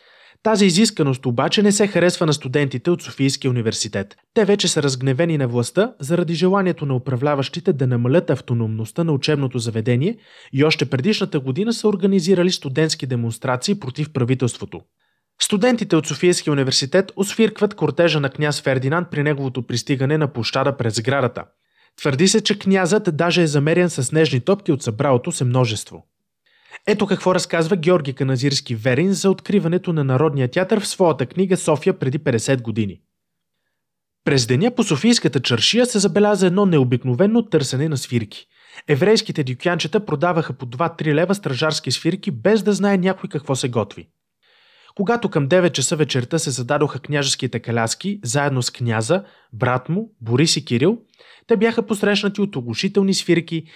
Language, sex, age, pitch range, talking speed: Bulgarian, male, 20-39, 130-190 Hz, 150 wpm